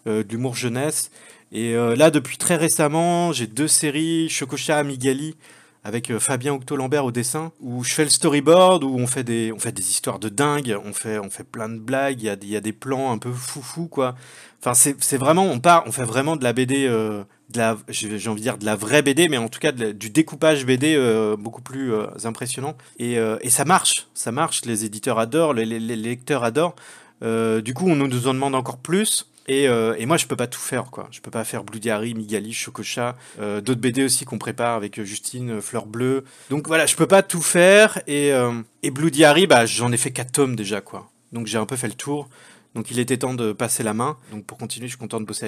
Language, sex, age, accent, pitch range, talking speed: French, male, 30-49, French, 115-150 Hz, 240 wpm